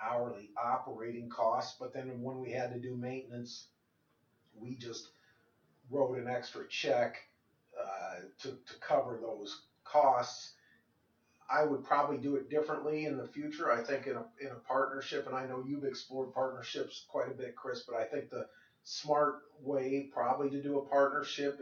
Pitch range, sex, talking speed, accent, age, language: 120-140 Hz, male, 165 wpm, American, 40-59, English